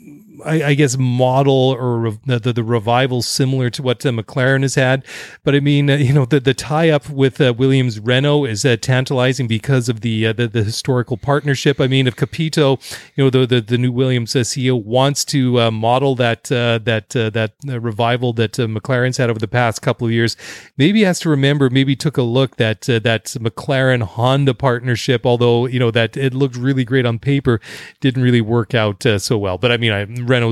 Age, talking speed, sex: 30-49, 220 wpm, male